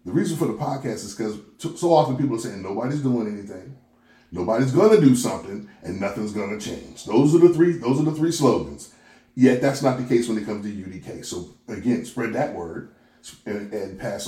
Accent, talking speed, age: American, 215 wpm, 40-59